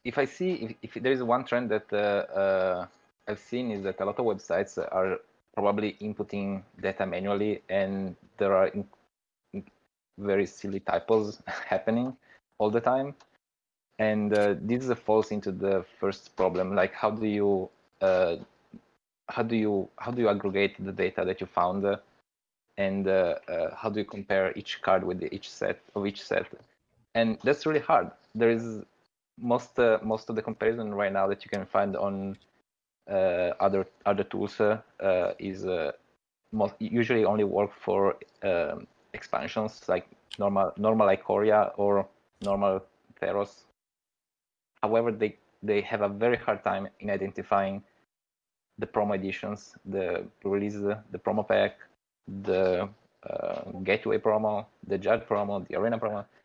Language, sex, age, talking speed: English, male, 20-39, 155 wpm